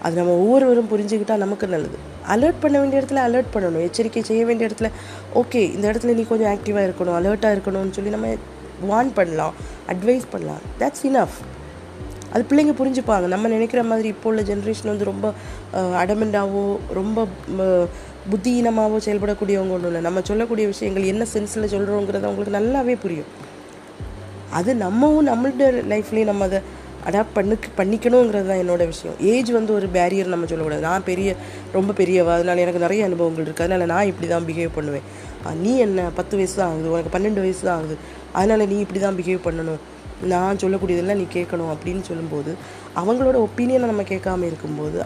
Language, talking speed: Tamil, 155 wpm